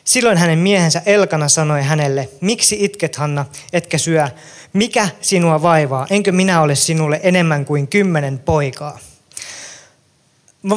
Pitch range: 150-200 Hz